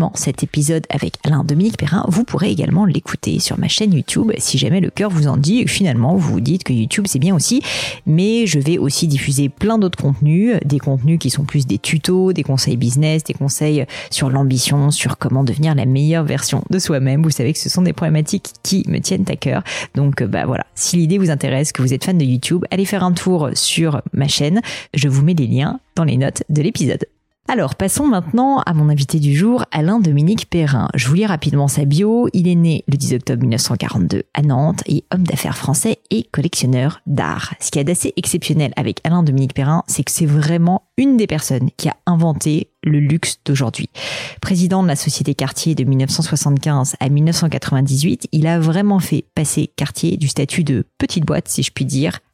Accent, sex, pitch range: French, female, 140-175 Hz